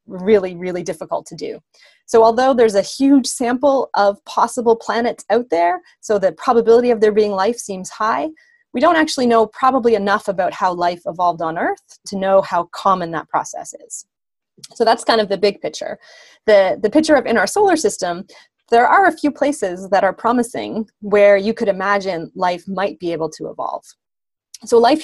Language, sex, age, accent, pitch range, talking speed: English, female, 30-49, American, 185-235 Hz, 190 wpm